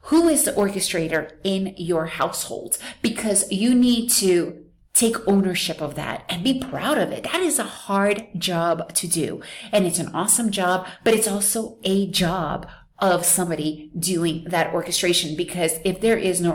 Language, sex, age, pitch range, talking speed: English, female, 30-49, 160-190 Hz, 170 wpm